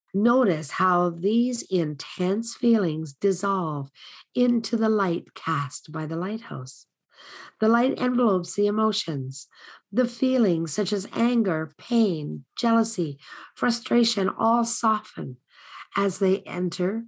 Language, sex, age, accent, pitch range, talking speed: English, female, 50-69, American, 160-220 Hz, 110 wpm